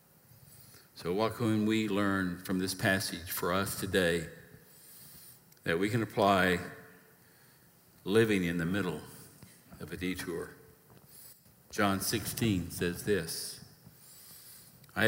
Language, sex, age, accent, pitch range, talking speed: English, male, 60-79, American, 95-130 Hz, 105 wpm